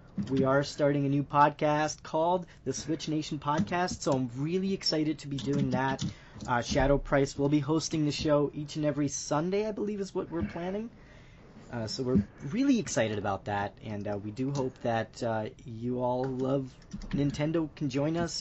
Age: 30-49